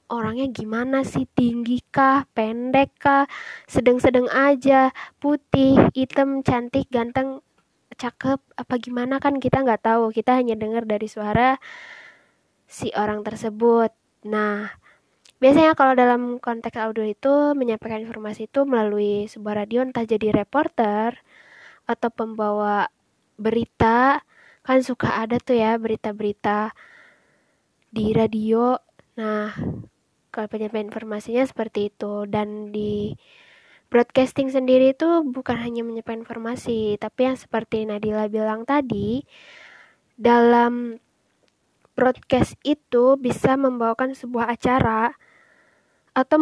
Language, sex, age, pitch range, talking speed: Indonesian, female, 20-39, 225-270 Hz, 110 wpm